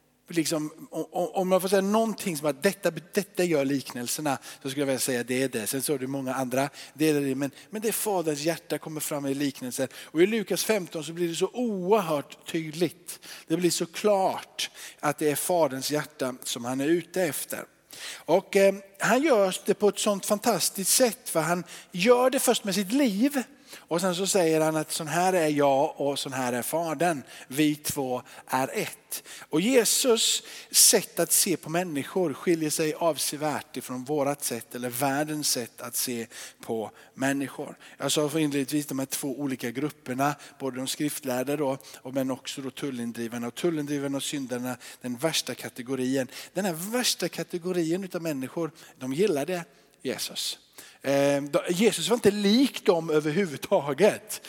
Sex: male